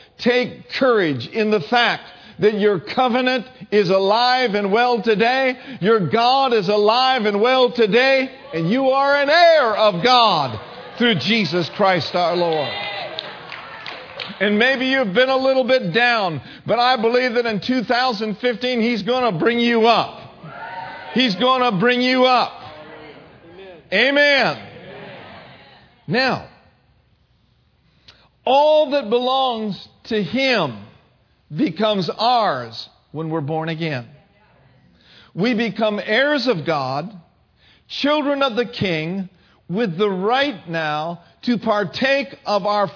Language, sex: English, male